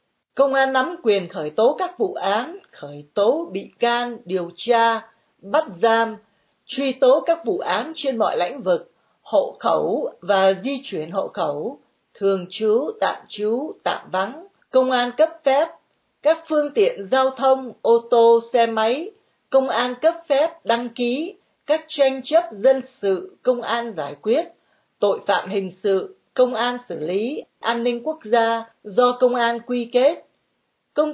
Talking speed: 165 wpm